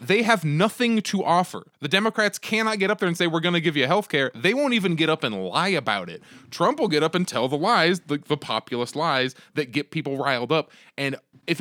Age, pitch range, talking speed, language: 20-39, 135-180 Hz, 250 wpm, English